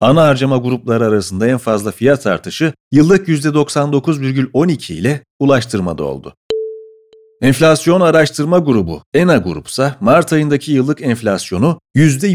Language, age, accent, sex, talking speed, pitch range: Turkish, 40-59, native, male, 110 wpm, 115-155 Hz